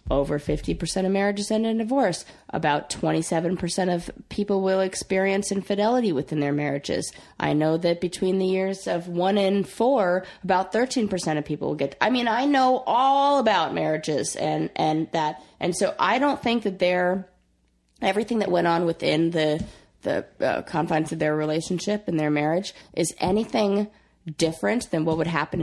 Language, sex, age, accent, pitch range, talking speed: English, female, 20-39, American, 150-195 Hz, 165 wpm